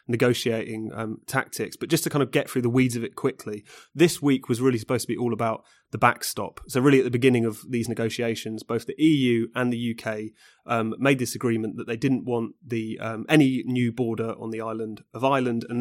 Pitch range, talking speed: 115-125 Hz, 225 wpm